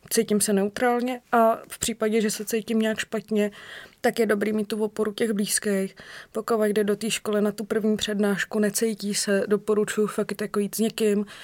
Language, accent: Czech, native